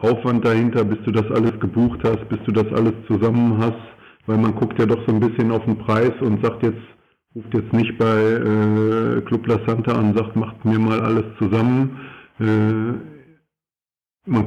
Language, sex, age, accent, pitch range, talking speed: German, male, 50-69, German, 105-120 Hz, 185 wpm